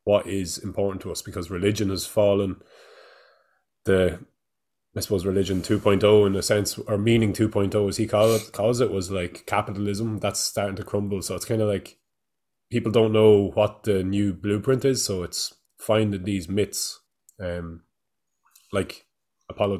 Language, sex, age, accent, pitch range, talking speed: English, male, 20-39, Irish, 95-105 Hz, 165 wpm